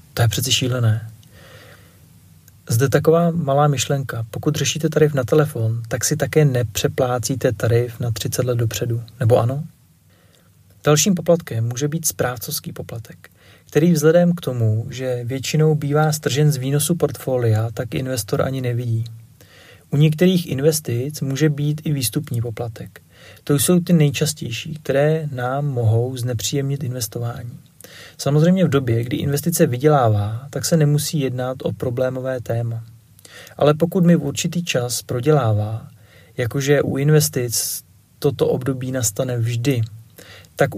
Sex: male